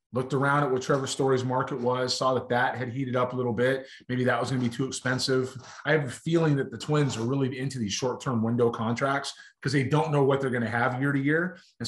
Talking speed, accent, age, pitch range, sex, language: 265 wpm, American, 30-49, 115-135 Hz, male, English